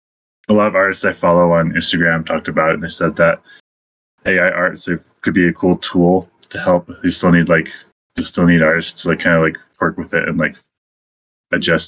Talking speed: 210 wpm